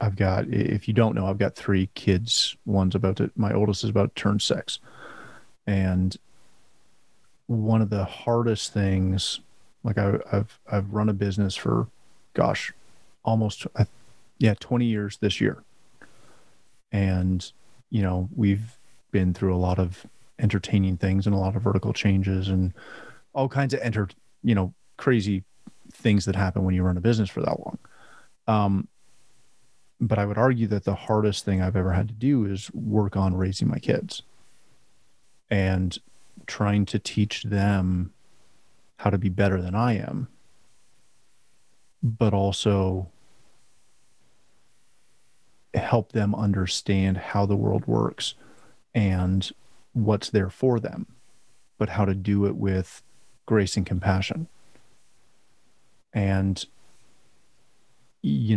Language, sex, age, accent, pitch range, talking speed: English, male, 30-49, American, 95-110 Hz, 135 wpm